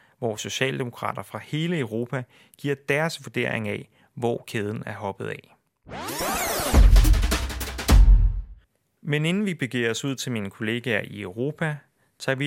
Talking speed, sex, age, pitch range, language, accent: 130 wpm, male, 30-49, 110-140 Hz, Danish, native